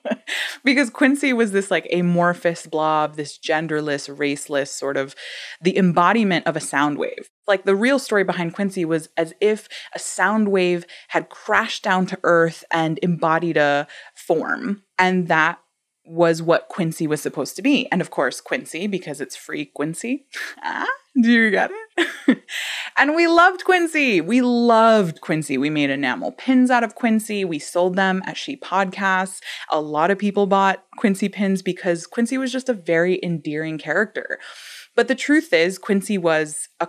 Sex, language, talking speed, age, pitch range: female, English, 170 wpm, 20-39, 165-230 Hz